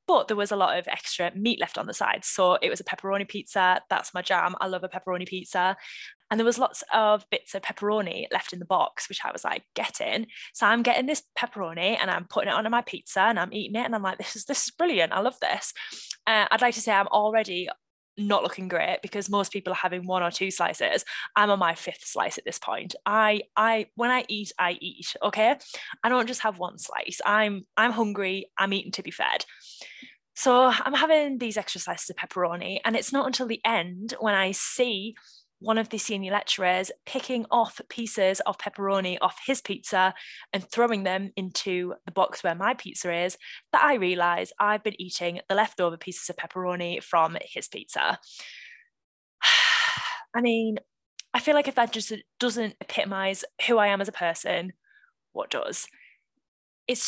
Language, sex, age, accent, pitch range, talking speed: English, female, 10-29, British, 185-240 Hz, 200 wpm